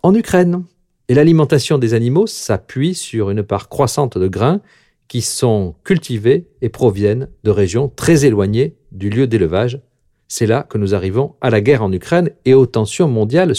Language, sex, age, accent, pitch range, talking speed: French, male, 50-69, French, 105-145 Hz, 170 wpm